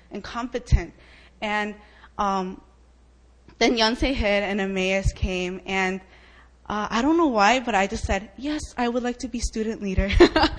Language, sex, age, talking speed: English, female, 20-39, 160 wpm